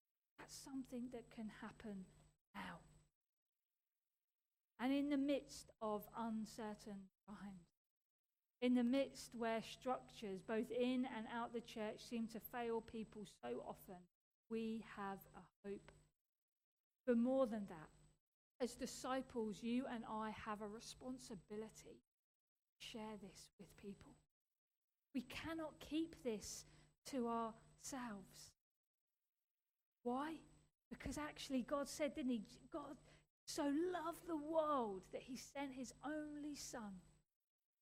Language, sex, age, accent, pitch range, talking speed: English, female, 40-59, British, 210-280 Hz, 120 wpm